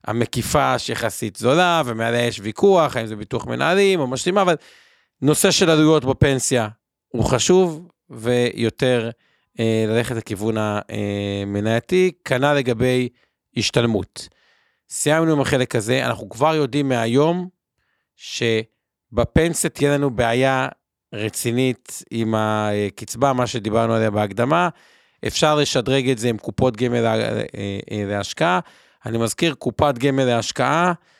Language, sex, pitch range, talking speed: Hebrew, male, 115-155 Hz, 115 wpm